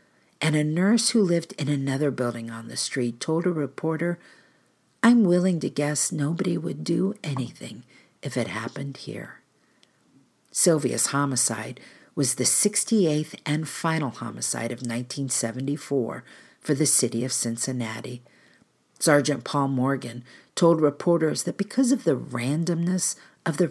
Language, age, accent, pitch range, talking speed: English, 50-69, American, 130-170 Hz, 135 wpm